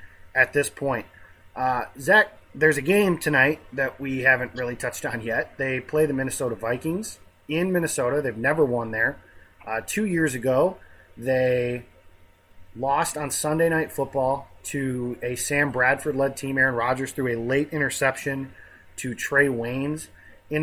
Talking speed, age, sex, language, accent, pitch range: 155 wpm, 30-49, male, English, American, 120-150 Hz